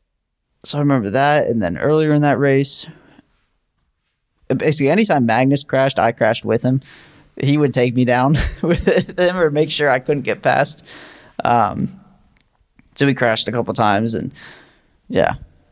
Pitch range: 110-140 Hz